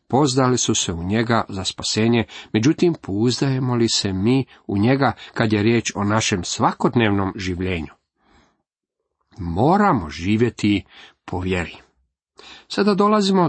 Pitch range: 105-155 Hz